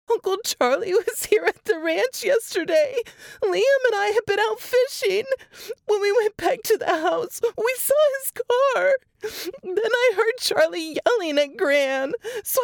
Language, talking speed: English, 160 wpm